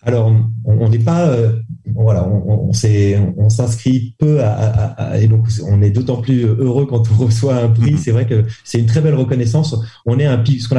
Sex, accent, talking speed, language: male, French, 235 wpm, French